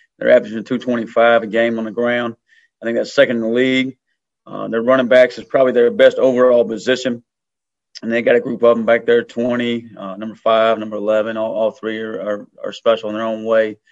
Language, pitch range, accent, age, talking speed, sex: English, 115-130 Hz, American, 30-49, 215 wpm, male